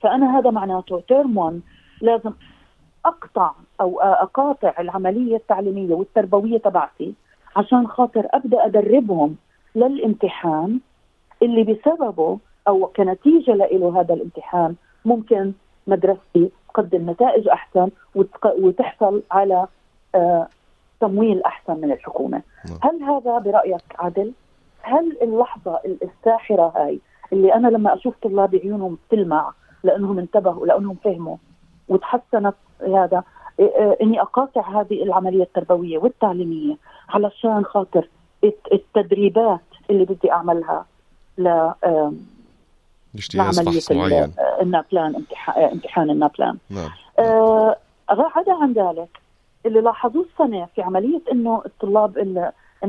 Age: 40-59